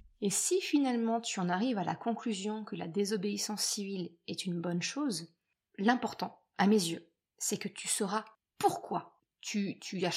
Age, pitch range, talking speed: 20-39, 200-245 Hz, 170 wpm